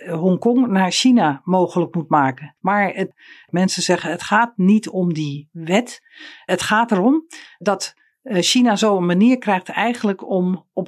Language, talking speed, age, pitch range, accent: Dutch, 145 wpm, 50-69, 175-225 Hz, Dutch